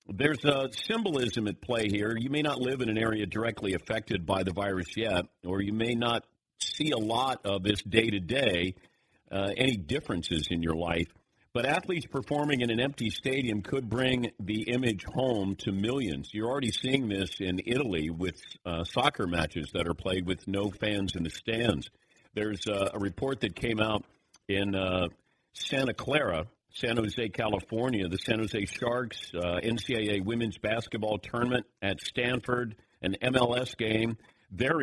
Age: 50-69